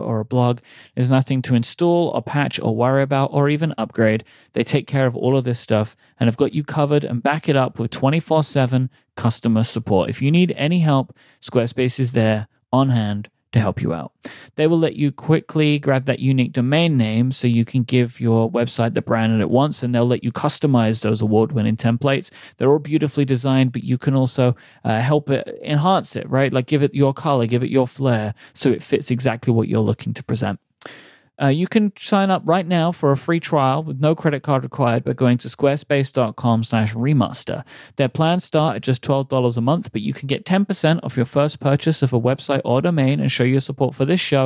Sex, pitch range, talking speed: male, 120-145 Hz, 220 wpm